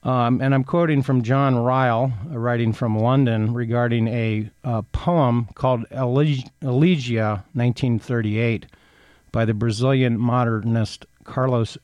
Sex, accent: male, American